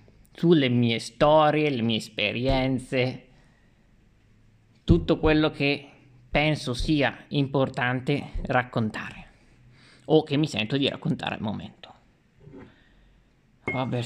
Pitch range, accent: 125-160 Hz, native